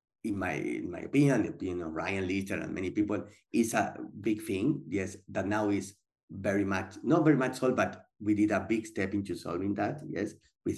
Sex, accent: male, Spanish